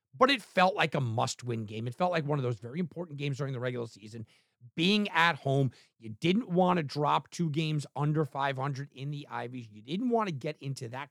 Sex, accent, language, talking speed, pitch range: male, American, English, 225 wpm, 140-195 Hz